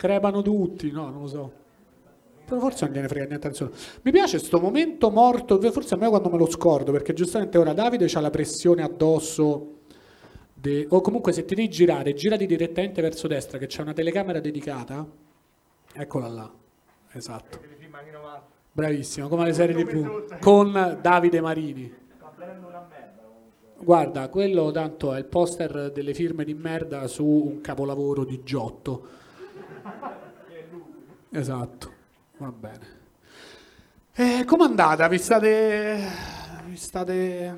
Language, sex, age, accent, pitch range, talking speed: Italian, male, 40-59, native, 145-185 Hz, 135 wpm